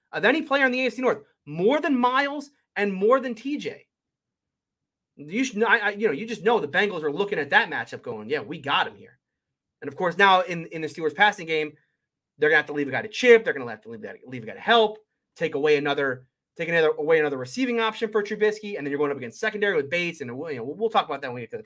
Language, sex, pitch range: English, male, 150-230 Hz